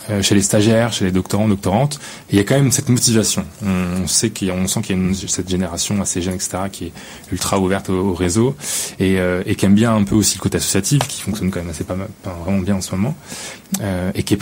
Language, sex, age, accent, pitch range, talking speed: French, male, 20-39, French, 95-115 Hz, 265 wpm